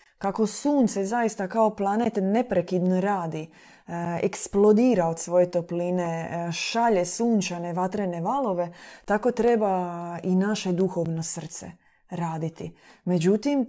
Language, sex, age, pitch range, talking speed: Croatian, female, 20-39, 175-220 Hz, 100 wpm